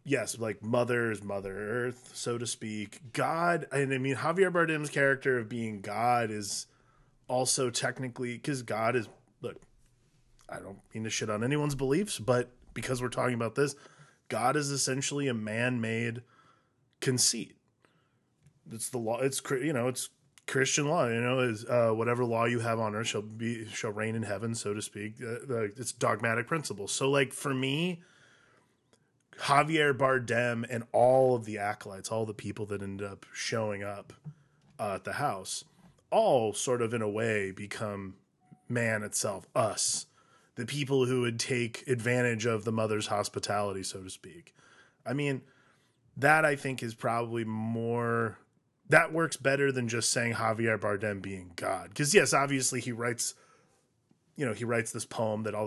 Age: 20-39